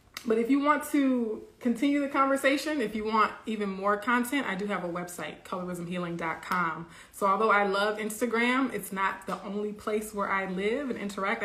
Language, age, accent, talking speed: English, 20-39, American, 185 wpm